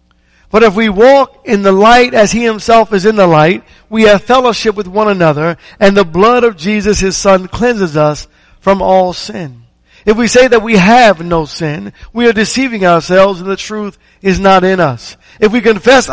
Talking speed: 200 wpm